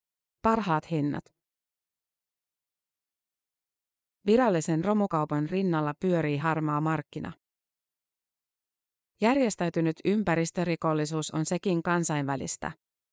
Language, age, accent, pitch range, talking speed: Finnish, 30-49, native, 155-185 Hz, 60 wpm